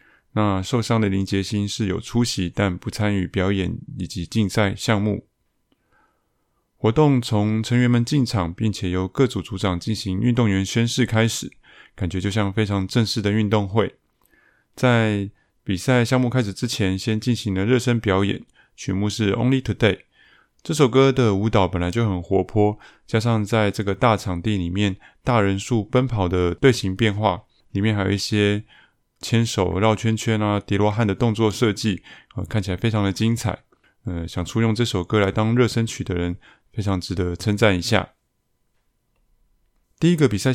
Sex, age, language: male, 20-39, Chinese